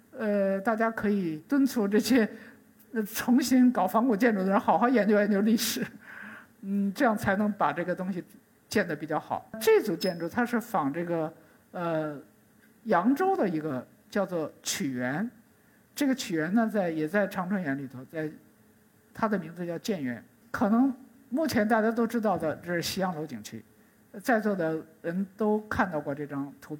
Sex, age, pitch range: male, 50-69, 175-245 Hz